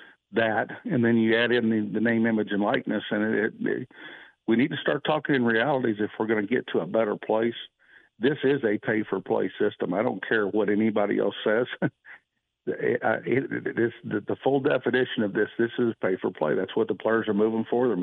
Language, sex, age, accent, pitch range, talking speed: English, male, 50-69, American, 105-125 Hz, 200 wpm